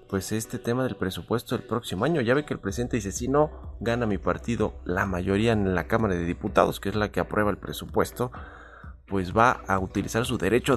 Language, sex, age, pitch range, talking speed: Spanish, male, 30-49, 95-115 Hz, 215 wpm